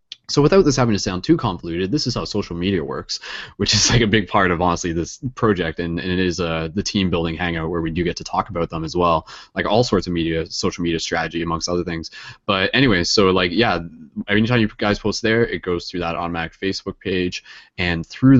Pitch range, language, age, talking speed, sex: 85-110 Hz, English, 20-39, 240 wpm, male